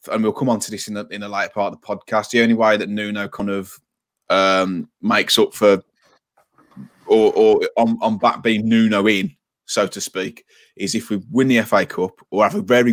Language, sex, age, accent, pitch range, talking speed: English, male, 20-39, British, 105-125 Hz, 225 wpm